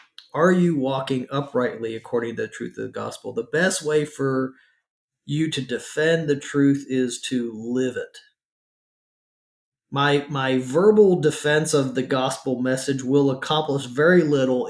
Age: 40-59